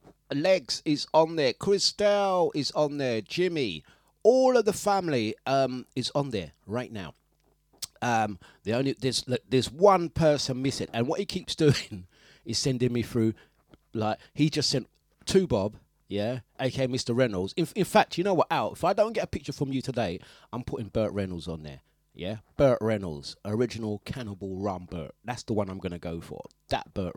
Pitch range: 100-140 Hz